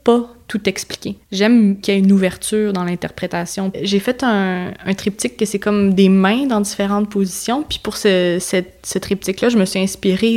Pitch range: 185-215 Hz